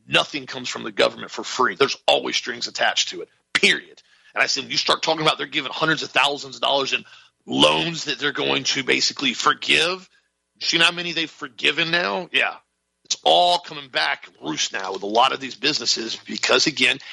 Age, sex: 40-59, male